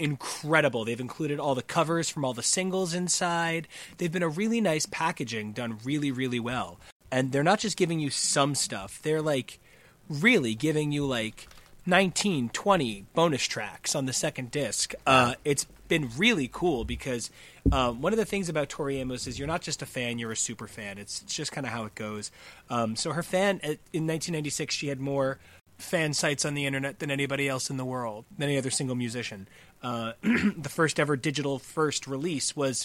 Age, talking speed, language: 30-49, 195 wpm, English